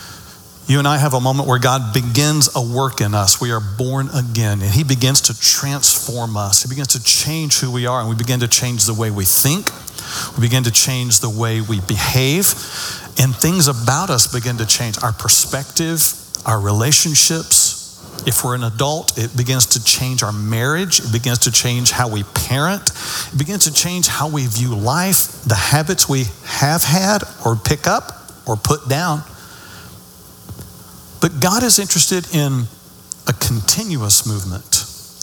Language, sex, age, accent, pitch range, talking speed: English, male, 50-69, American, 115-150 Hz, 175 wpm